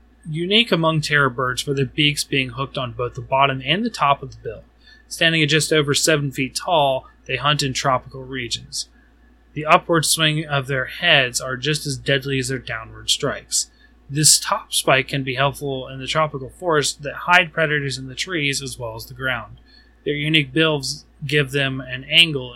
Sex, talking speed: male, 195 wpm